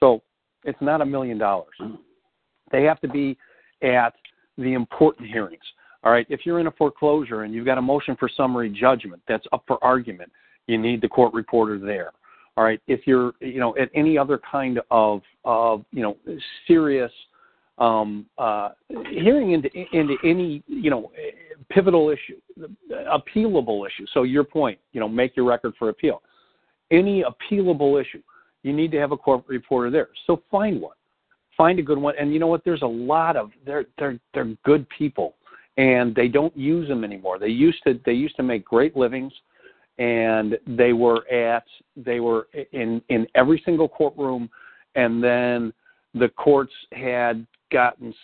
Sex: male